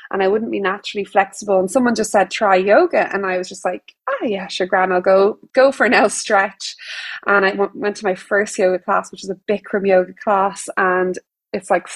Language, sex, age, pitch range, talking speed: English, female, 20-39, 195-250 Hz, 230 wpm